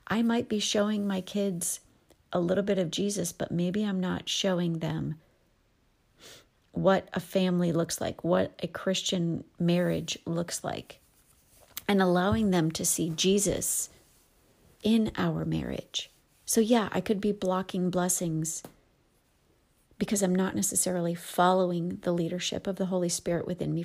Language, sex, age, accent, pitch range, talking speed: English, female, 40-59, American, 175-215 Hz, 145 wpm